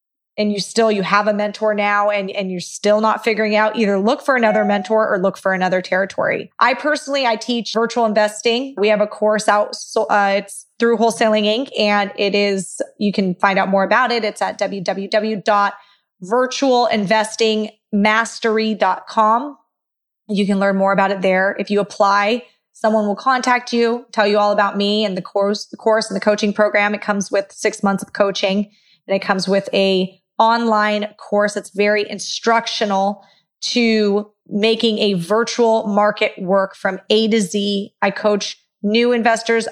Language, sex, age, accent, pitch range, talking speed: English, female, 20-39, American, 200-220 Hz, 170 wpm